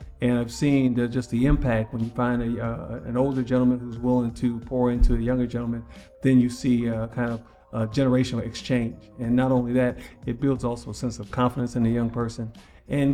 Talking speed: 220 wpm